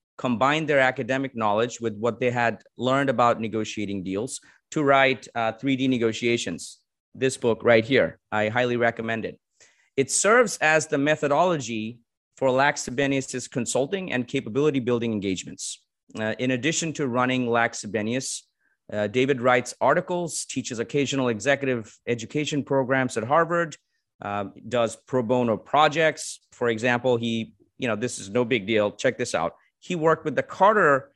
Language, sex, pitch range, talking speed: English, male, 115-140 Hz, 150 wpm